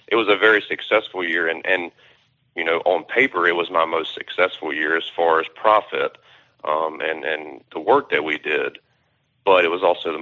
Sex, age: male, 40-59